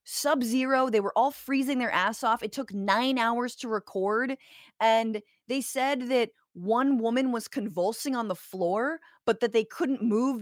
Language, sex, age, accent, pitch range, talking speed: English, female, 20-39, American, 225-295 Hz, 175 wpm